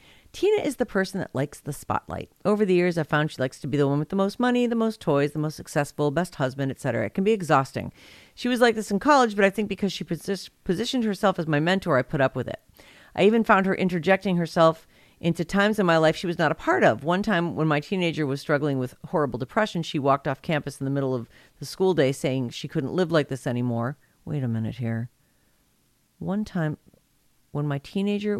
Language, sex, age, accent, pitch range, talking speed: English, female, 50-69, American, 140-185 Hz, 235 wpm